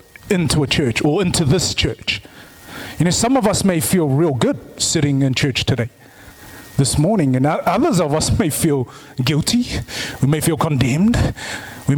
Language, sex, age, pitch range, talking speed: English, male, 30-49, 120-175 Hz, 170 wpm